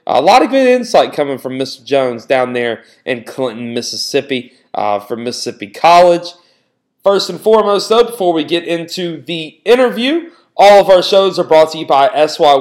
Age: 30-49